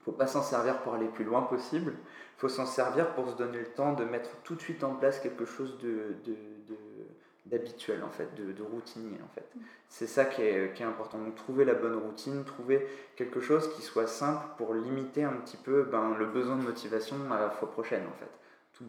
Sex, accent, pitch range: male, French, 110-135 Hz